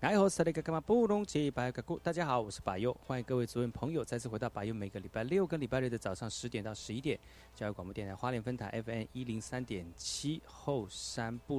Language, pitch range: Chinese, 100-130 Hz